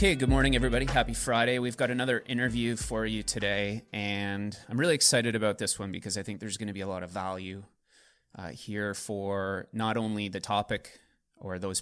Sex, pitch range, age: male, 95-110 Hz, 30-49